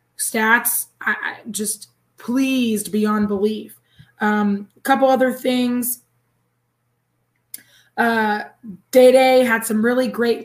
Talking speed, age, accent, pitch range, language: 110 wpm, 20-39, American, 210-240 Hz, English